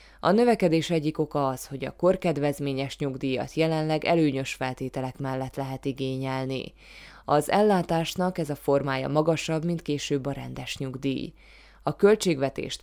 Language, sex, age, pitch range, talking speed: Hungarian, female, 20-39, 135-165 Hz, 130 wpm